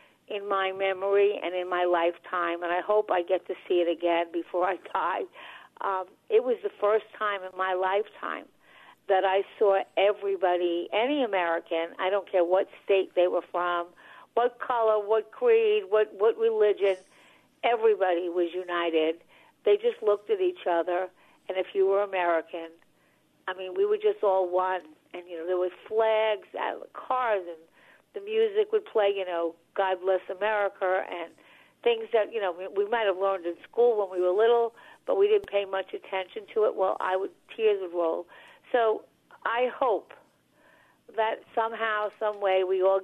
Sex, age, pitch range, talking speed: female, 50-69, 180-220 Hz, 175 wpm